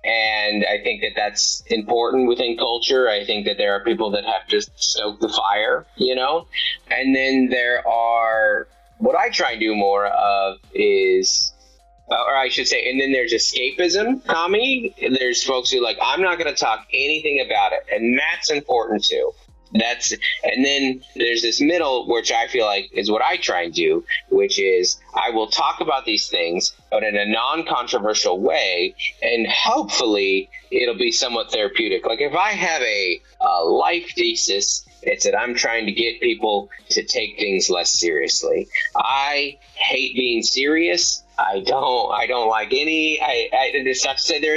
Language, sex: English, male